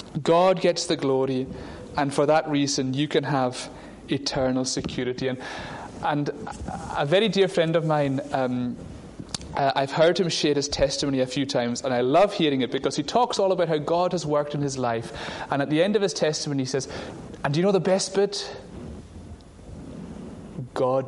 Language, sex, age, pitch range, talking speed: English, male, 30-49, 135-185 Hz, 190 wpm